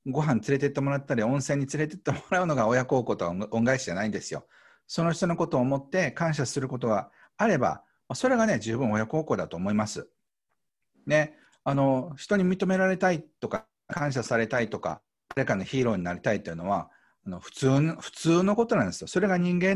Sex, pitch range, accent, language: male, 115-155 Hz, native, Japanese